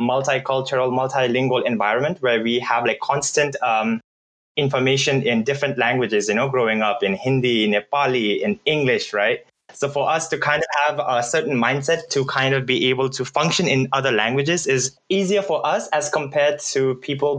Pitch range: 130-165 Hz